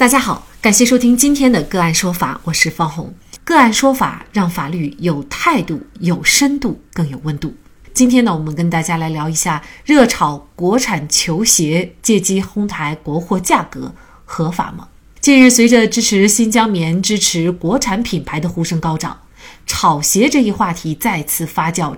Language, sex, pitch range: Chinese, female, 165-240 Hz